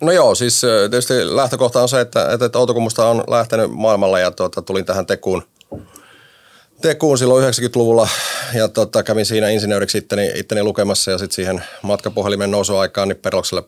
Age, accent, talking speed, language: 30-49, native, 145 wpm, Finnish